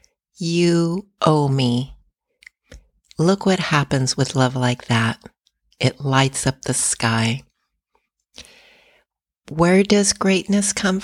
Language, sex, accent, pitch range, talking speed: English, female, American, 135-165 Hz, 105 wpm